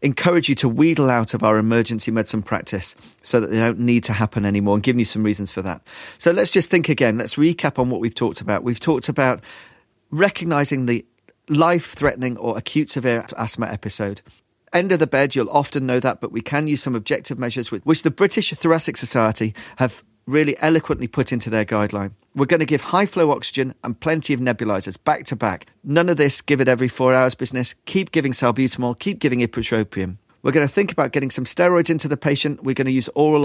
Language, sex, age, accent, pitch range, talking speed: English, male, 40-59, British, 110-145 Hz, 215 wpm